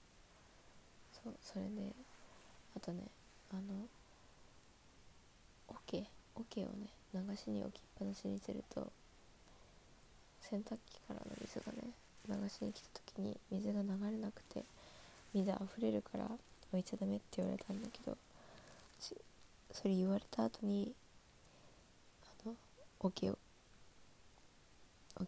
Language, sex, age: Japanese, female, 20-39